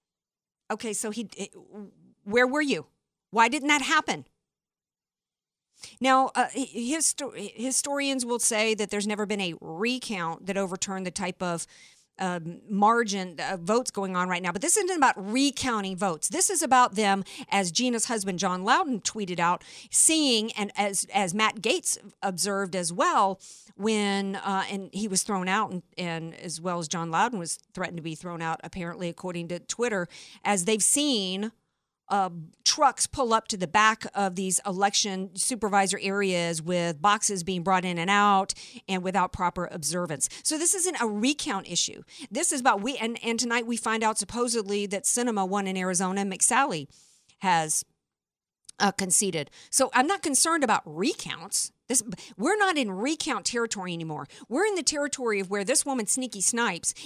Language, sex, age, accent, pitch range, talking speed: English, female, 50-69, American, 185-240 Hz, 170 wpm